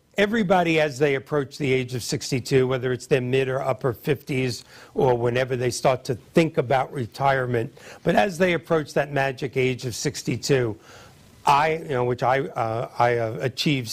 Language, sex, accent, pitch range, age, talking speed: English, male, American, 130-170 Hz, 60-79, 170 wpm